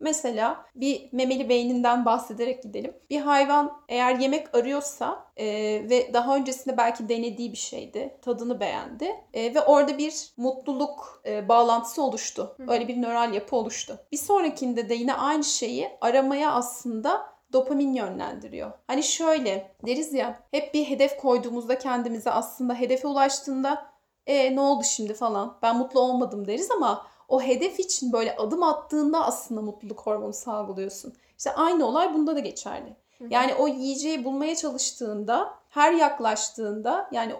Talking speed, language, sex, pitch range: 145 wpm, Turkish, female, 240-290 Hz